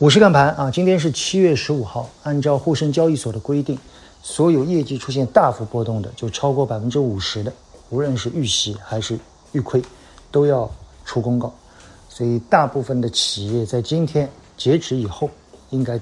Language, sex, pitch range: Chinese, male, 115-150 Hz